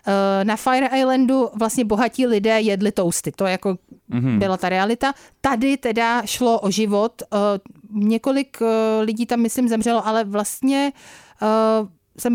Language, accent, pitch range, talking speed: Czech, native, 200-235 Hz, 125 wpm